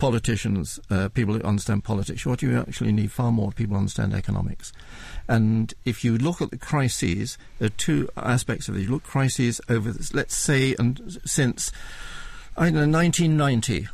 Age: 50-69